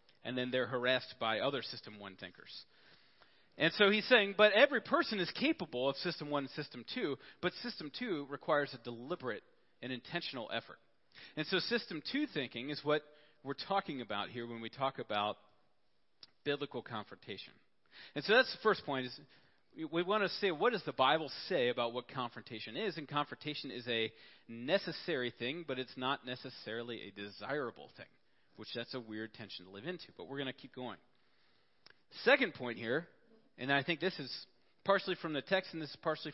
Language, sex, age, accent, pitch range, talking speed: English, male, 40-59, American, 120-170 Hz, 185 wpm